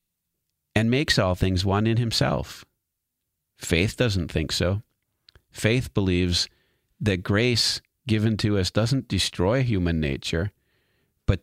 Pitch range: 90-120 Hz